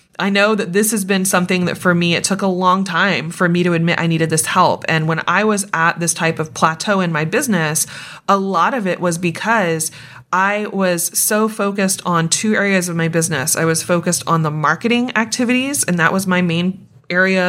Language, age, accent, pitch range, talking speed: English, 30-49, American, 170-205 Hz, 220 wpm